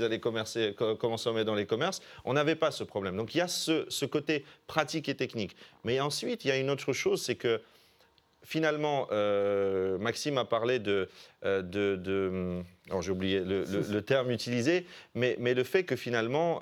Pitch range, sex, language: 110-150 Hz, male, French